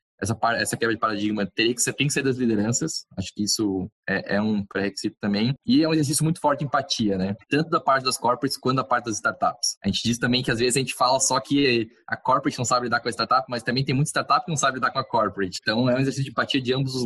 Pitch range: 110-135 Hz